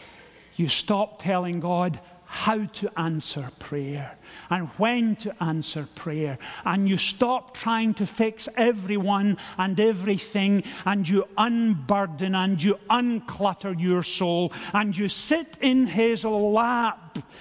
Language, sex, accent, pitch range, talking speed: English, male, British, 175-230 Hz, 125 wpm